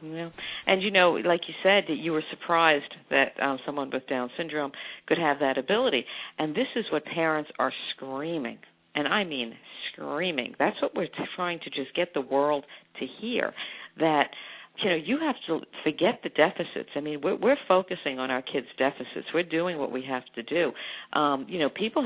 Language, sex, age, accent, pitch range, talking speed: English, female, 50-69, American, 135-175 Hz, 195 wpm